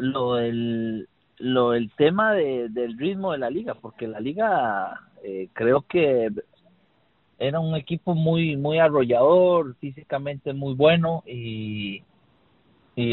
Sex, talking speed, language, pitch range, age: male, 130 wpm, Spanish, 125-160 Hz, 50-69